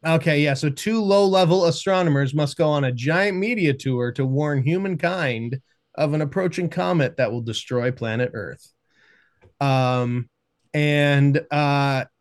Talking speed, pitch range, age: 145 wpm, 130-170 Hz, 20-39